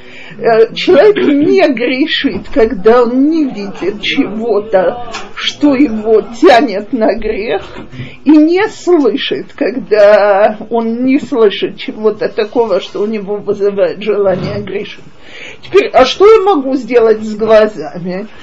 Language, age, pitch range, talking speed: Russian, 50-69, 220-345 Hz, 115 wpm